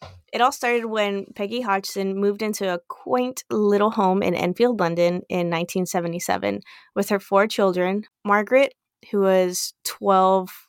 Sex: female